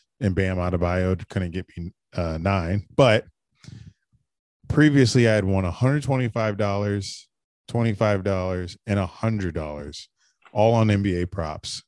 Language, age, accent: English, 20-39, American